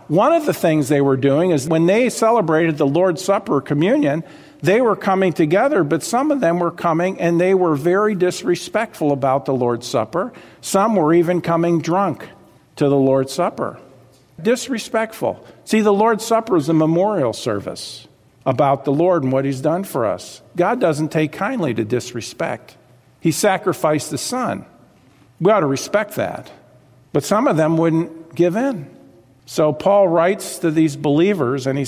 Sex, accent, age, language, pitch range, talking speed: male, American, 50-69, English, 135-180 Hz, 170 wpm